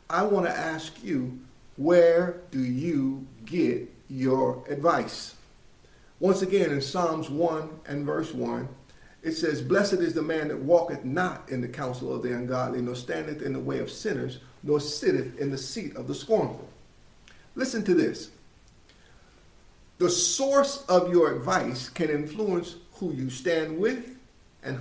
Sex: male